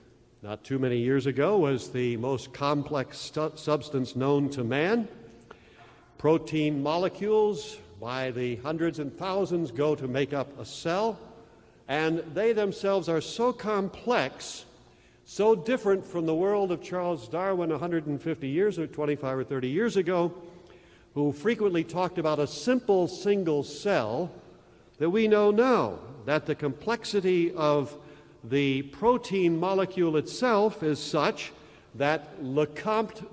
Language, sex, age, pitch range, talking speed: English, male, 60-79, 145-200 Hz, 135 wpm